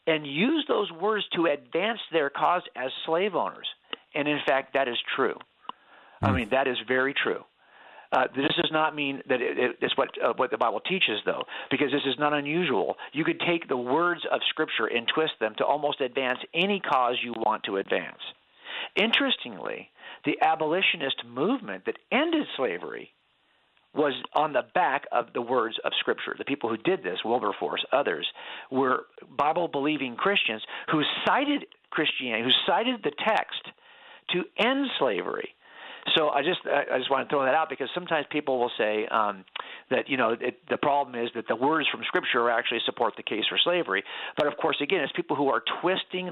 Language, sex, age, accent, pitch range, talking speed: English, male, 50-69, American, 135-215 Hz, 185 wpm